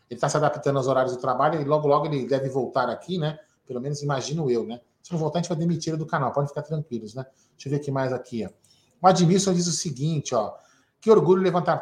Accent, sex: Brazilian, male